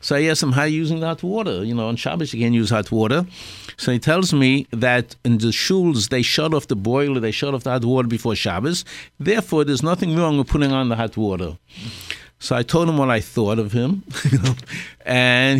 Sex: male